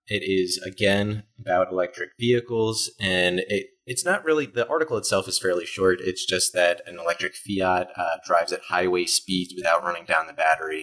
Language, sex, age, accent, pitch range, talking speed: English, male, 20-39, American, 90-115 Hz, 185 wpm